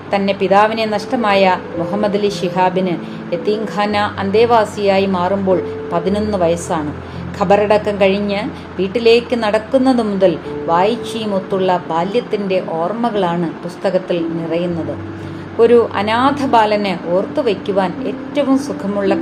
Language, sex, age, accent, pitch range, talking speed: Malayalam, female, 30-49, native, 180-215 Hz, 85 wpm